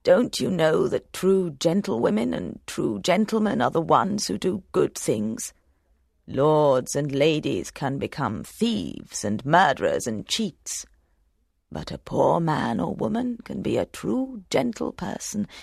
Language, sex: Chinese, female